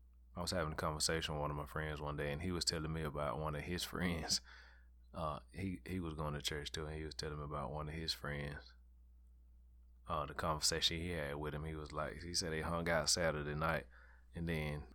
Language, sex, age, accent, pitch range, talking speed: English, male, 20-39, American, 75-95 Hz, 235 wpm